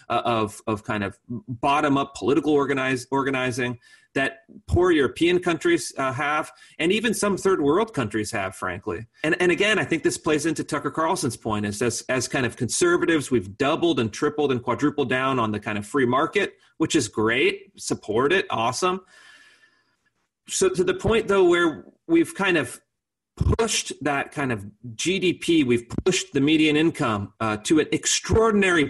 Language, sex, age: English, male, 30-49